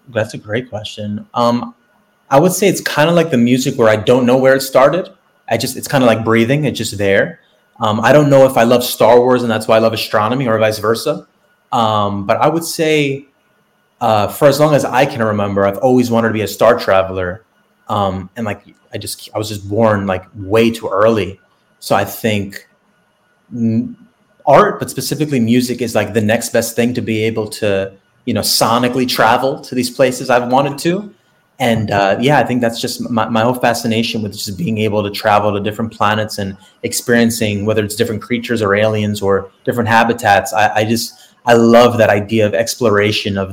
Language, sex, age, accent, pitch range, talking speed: English, male, 30-49, American, 105-120 Hz, 210 wpm